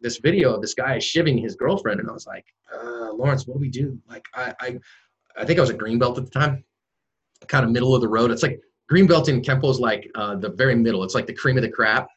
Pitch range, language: 115-150 Hz, English